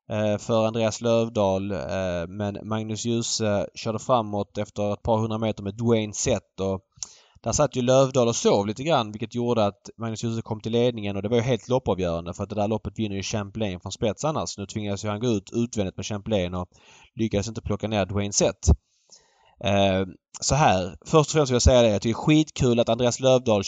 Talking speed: 205 wpm